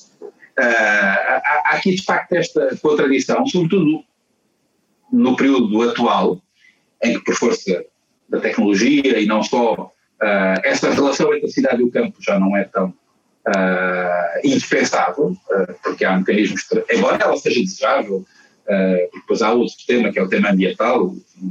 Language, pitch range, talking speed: Portuguese, 115-190 Hz, 140 wpm